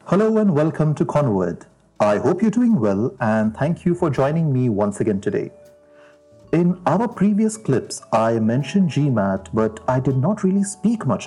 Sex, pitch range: male, 115-165 Hz